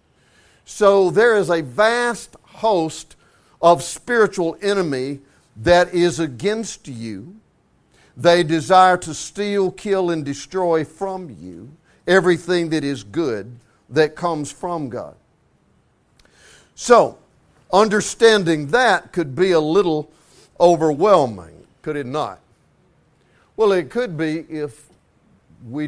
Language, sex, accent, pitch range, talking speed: English, male, American, 155-200 Hz, 110 wpm